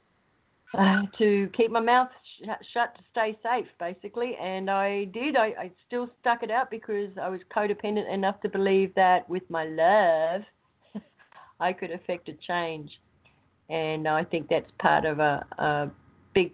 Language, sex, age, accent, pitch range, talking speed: English, female, 40-59, Australian, 165-200 Hz, 160 wpm